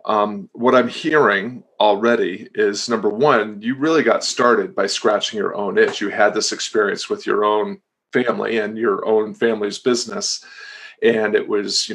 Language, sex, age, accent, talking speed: English, male, 40-59, American, 165 wpm